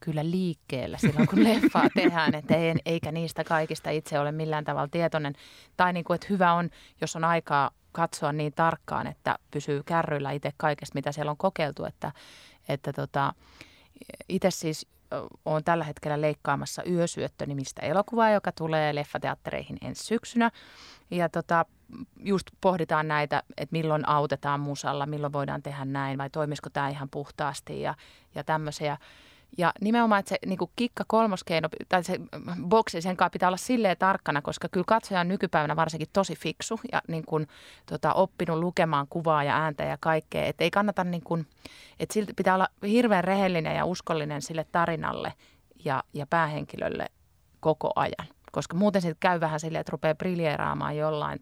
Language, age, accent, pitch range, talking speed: Finnish, 30-49, native, 150-180 Hz, 165 wpm